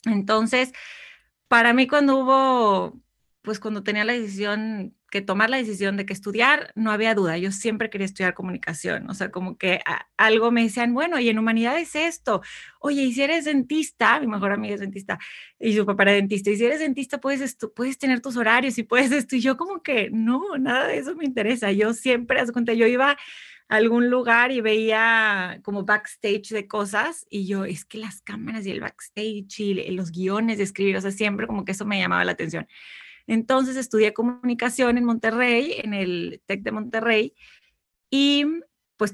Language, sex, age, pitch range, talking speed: Spanish, female, 30-49, 200-250 Hz, 195 wpm